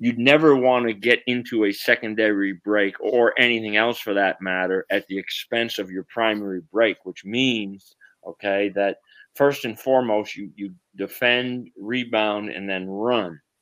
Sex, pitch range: male, 95-115 Hz